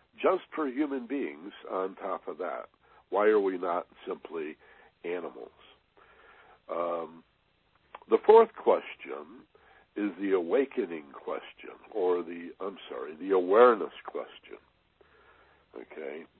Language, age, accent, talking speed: English, 60-79, American, 110 wpm